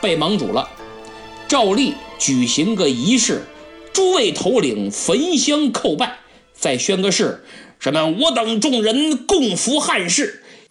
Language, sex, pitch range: Chinese, male, 185-275 Hz